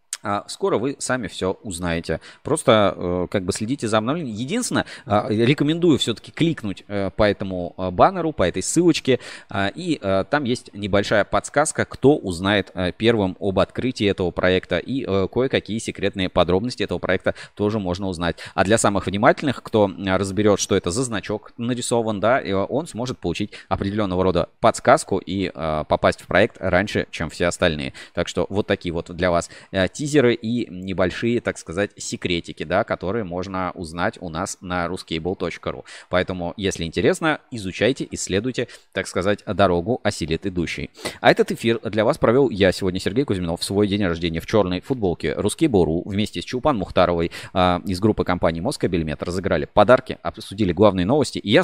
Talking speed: 155 wpm